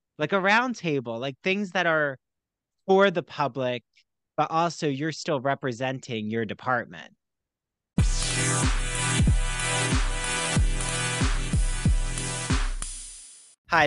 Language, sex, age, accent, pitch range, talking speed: English, male, 30-49, American, 135-190 Hz, 80 wpm